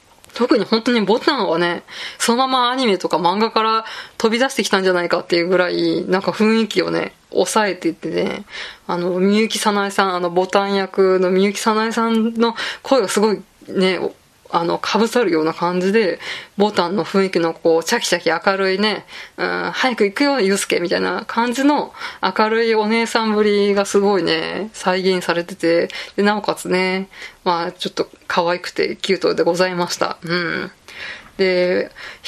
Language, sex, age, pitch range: Japanese, female, 20-39, 180-230 Hz